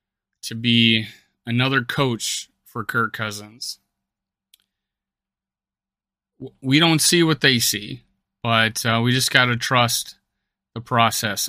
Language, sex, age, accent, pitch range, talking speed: English, male, 30-49, American, 120-145 Hz, 110 wpm